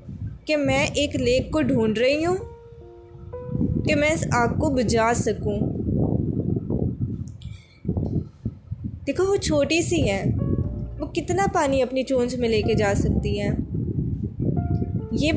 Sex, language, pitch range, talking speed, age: female, Urdu, 220-295 Hz, 125 wpm, 20-39